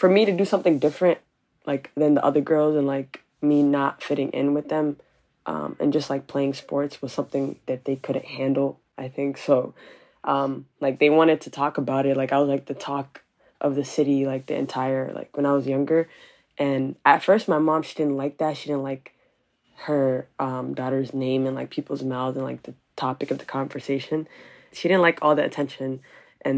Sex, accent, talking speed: female, American, 210 wpm